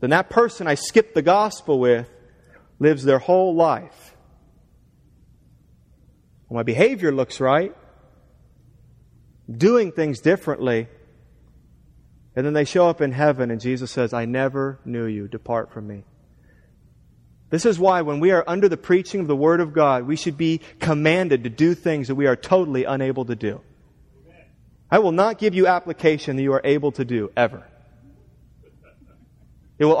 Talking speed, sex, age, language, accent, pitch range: 160 wpm, male, 30-49, English, American, 125-205 Hz